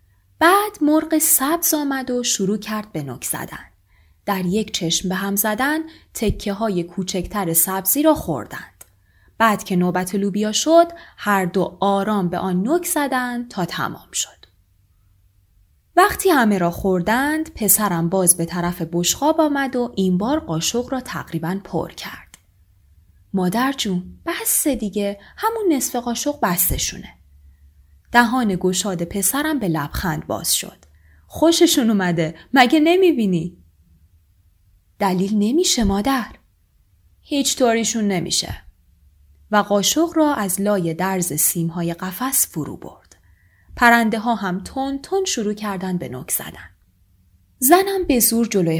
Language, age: Persian, 20-39